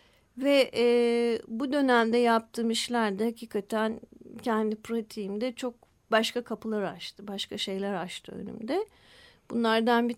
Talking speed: 120 wpm